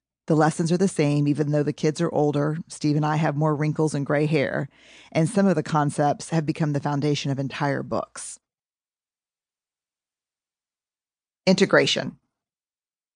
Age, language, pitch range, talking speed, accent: 40-59, English, 145-175 Hz, 150 wpm, American